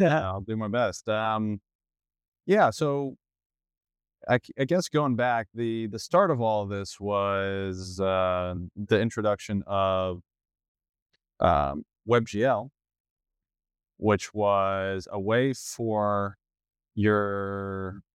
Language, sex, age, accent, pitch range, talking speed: English, male, 20-39, American, 95-115 Hz, 110 wpm